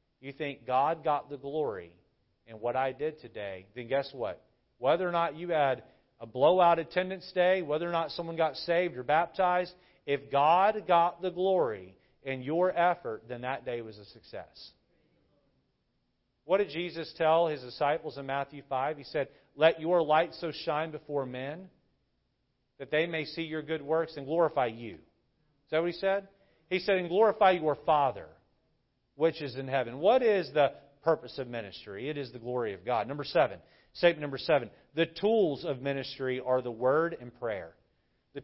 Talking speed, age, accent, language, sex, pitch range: 180 wpm, 40-59, American, English, male, 135-170 Hz